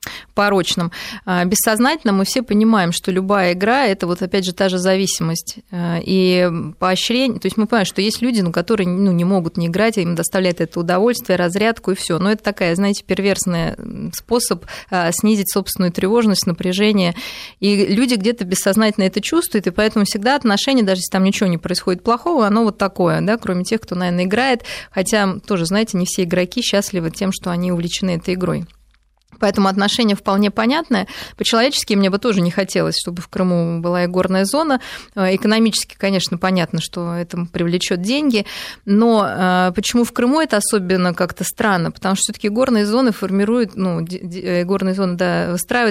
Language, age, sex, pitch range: Russian, 20-39, female, 180-215 Hz